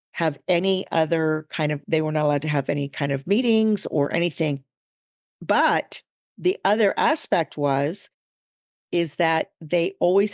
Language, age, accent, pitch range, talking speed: English, 50-69, American, 160-210 Hz, 150 wpm